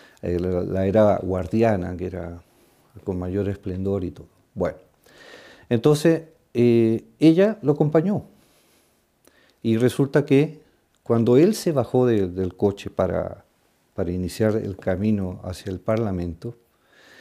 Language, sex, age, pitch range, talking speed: Spanish, male, 50-69, 100-130 Hz, 120 wpm